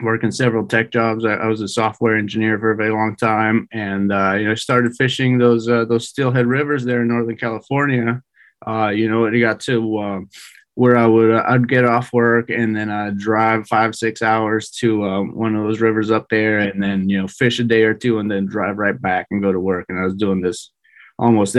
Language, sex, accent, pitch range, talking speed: English, male, American, 105-120 Hz, 240 wpm